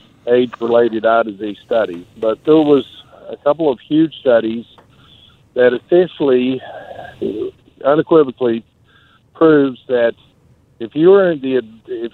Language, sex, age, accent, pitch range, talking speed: English, male, 60-79, American, 120-150 Hz, 115 wpm